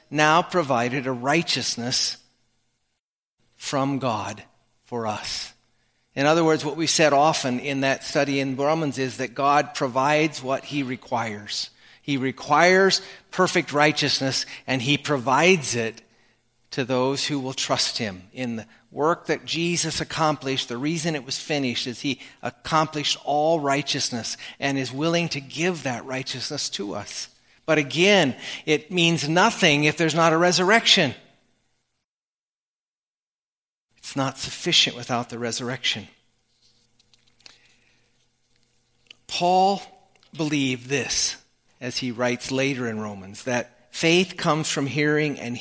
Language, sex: English, male